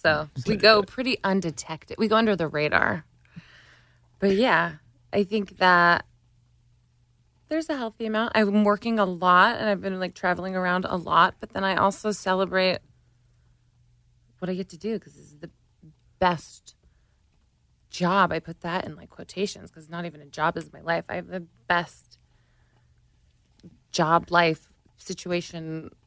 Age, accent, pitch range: 20-39, American, 155-200 Hz